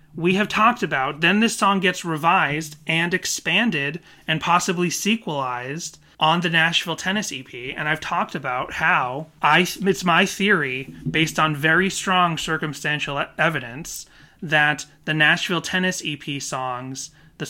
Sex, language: male, English